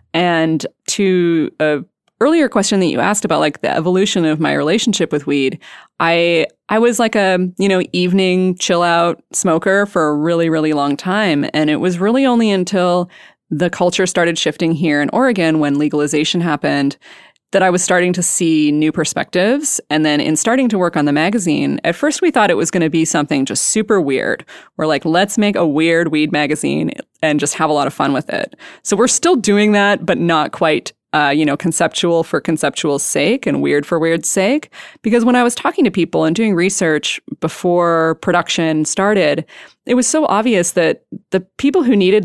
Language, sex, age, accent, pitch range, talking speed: English, female, 20-39, American, 160-205 Hz, 195 wpm